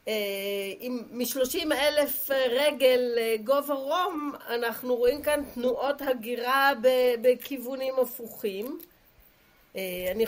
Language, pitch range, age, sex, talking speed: Hebrew, 210-250 Hz, 50-69, female, 80 wpm